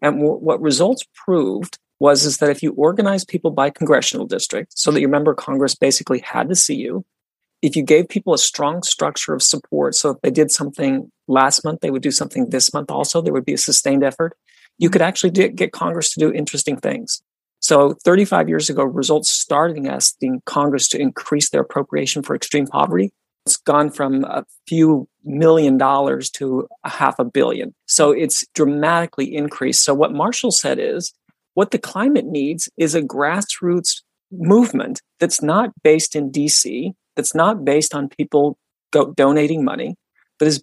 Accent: American